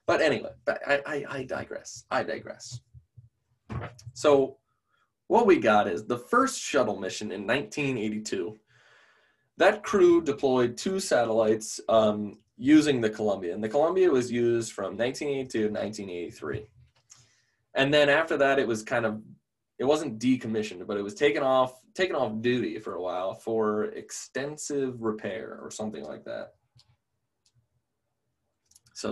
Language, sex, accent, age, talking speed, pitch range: English, male, American, 20-39, 135 wpm, 110-135 Hz